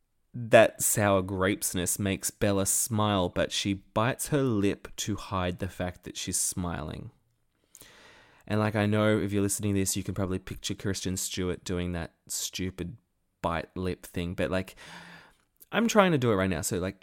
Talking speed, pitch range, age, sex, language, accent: 175 wpm, 95-130 Hz, 20-39, male, English, Australian